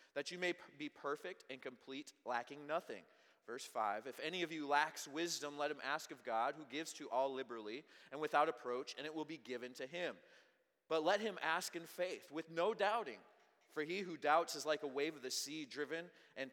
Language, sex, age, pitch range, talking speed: English, male, 30-49, 125-160 Hz, 215 wpm